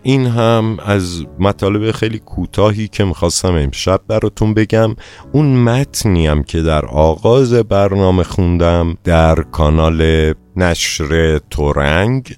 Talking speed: 105 wpm